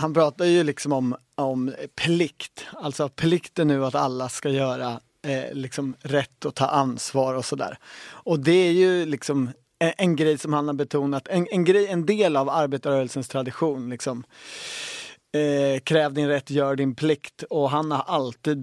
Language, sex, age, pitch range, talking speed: Swedish, male, 30-49, 135-160 Hz, 170 wpm